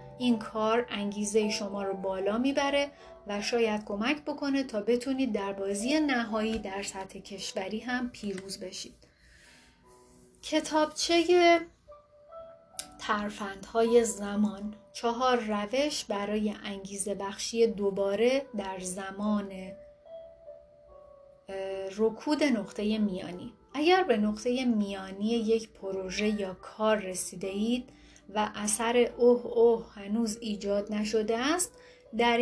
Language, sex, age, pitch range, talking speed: Persian, female, 30-49, 200-255 Hz, 100 wpm